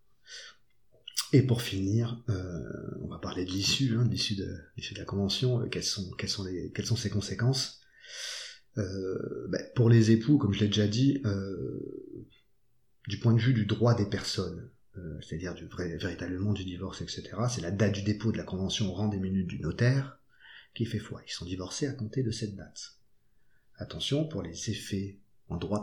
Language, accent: French, French